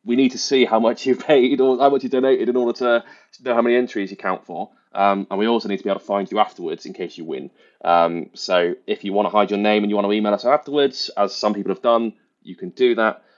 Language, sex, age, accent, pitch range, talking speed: English, male, 20-39, British, 95-120 Hz, 285 wpm